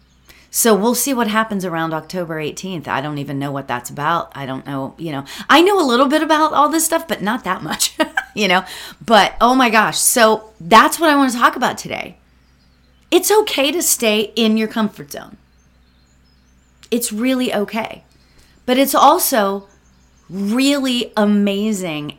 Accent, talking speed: American, 175 wpm